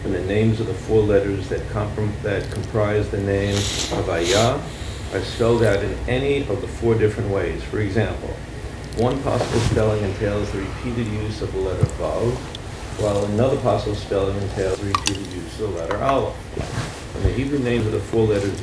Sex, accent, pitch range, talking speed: male, American, 100-115 Hz, 185 wpm